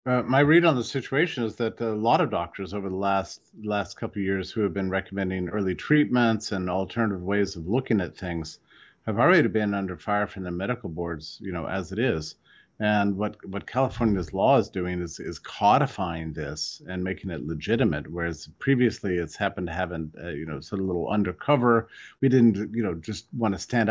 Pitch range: 95-115 Hz